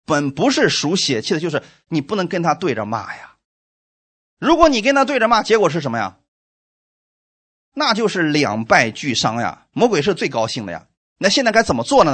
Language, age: Chinese, 30-49